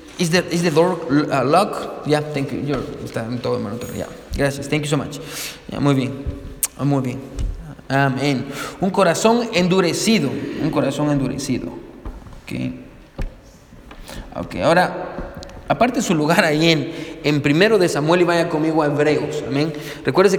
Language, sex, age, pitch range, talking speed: Spanish, male, 30-49, 155-210 Hz, 150 wpm